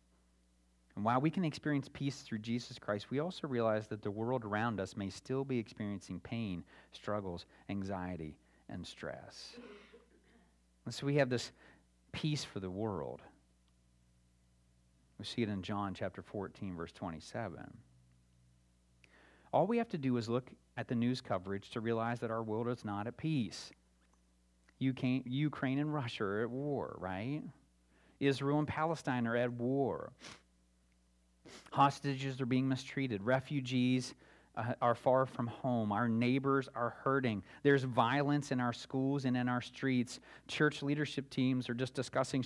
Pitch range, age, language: 80-130 Hz, 40-59, English